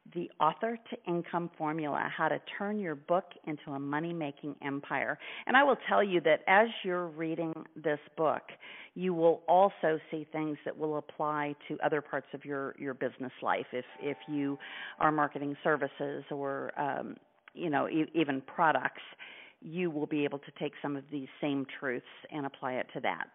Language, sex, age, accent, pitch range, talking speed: English, female, 50-69, American, 145-175 Hz, 175 wpm